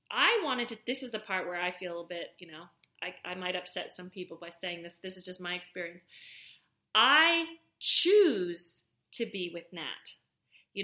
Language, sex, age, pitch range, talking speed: English, female, 30-49, 185-250 Hz, 195 wpm